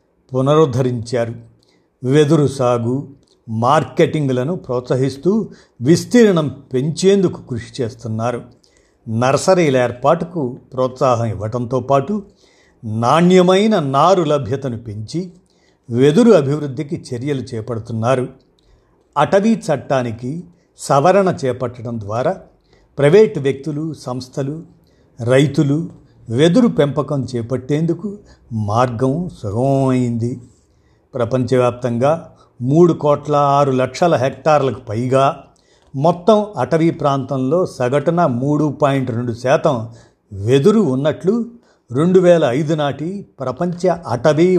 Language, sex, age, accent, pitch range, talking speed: Telugu, male, 50-69, native, 125-160 Hz, 75 wpm